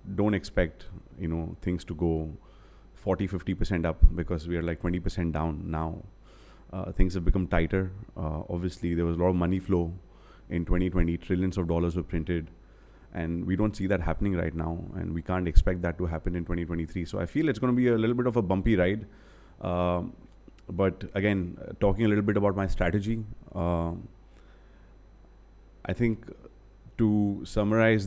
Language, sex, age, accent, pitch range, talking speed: English, male, 30-49, Indian, 90-100 Hz, 180 wpm